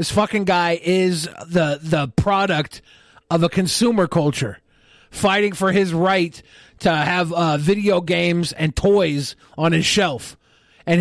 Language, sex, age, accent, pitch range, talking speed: English, male, 40-59, American, 165-215 Hz, 140 wpm